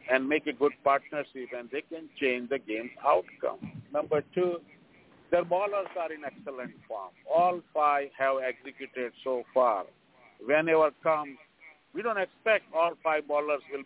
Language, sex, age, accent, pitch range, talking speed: English, male, 50-69, Indian, 130-150 Hz, 155 wpm